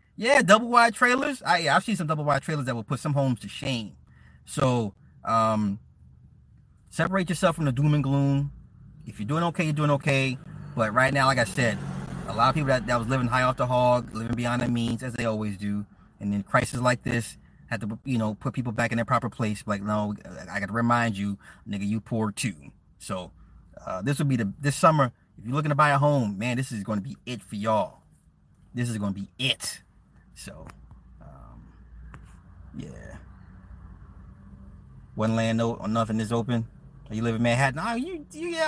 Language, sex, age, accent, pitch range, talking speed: English, male, 30-49, American, 105-145 Hz, 205 wpm